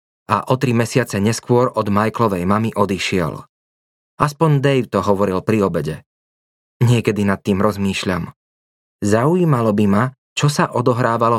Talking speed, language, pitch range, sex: 130 wpm, Slovak, 100-130 Hz, male